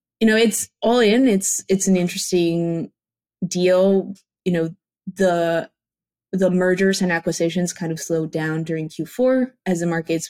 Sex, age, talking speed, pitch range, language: female, 20-39, 150 wpm, 165-195 Hz, English